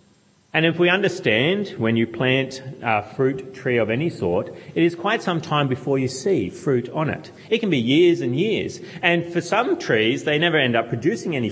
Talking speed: 210 wpm